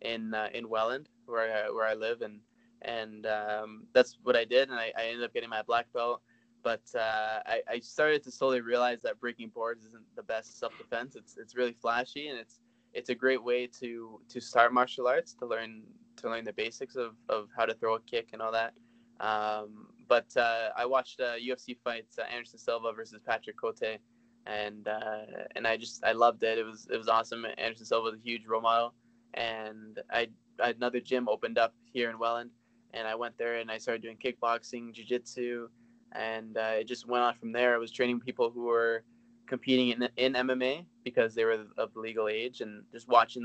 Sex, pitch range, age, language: male, 115-125 Hz, 20-39, English